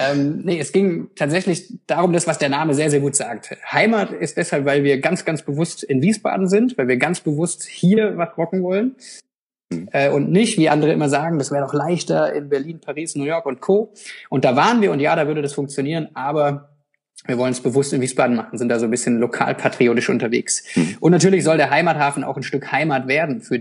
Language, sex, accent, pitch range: German, male, German, 135-170 Hz